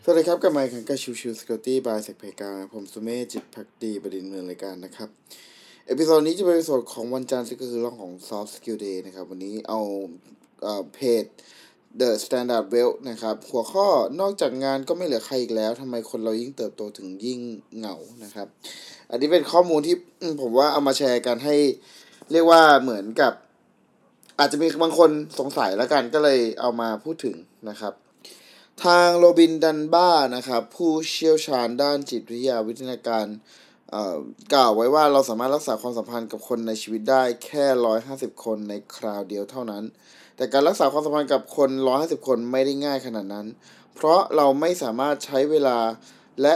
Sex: male